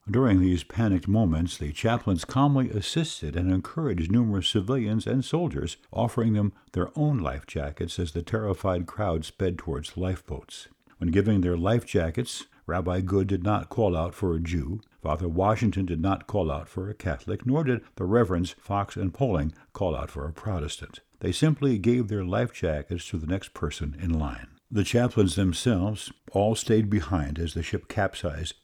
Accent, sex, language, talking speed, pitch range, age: American, male, English, 175 wpm, 85-115 Hz, 60-79